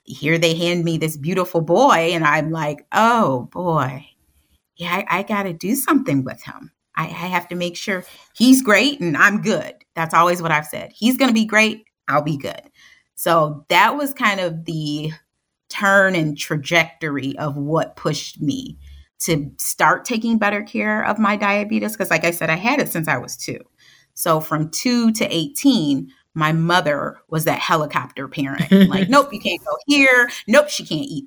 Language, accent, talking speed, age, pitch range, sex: English, American, 185 wpm, 30-49, 155-225 Hz, female